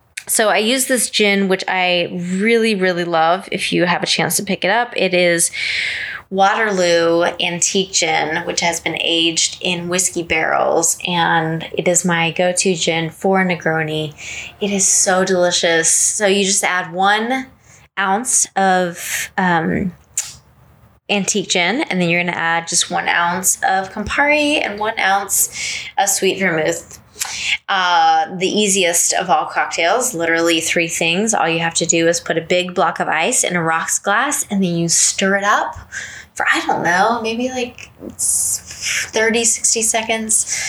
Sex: female